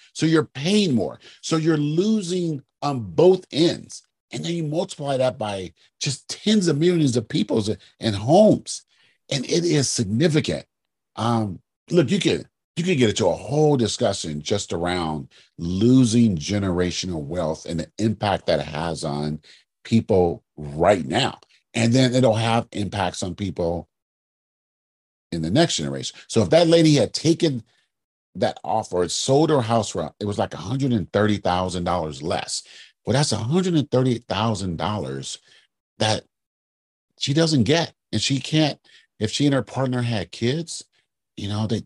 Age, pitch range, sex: 40-59, 90-145 Hz, male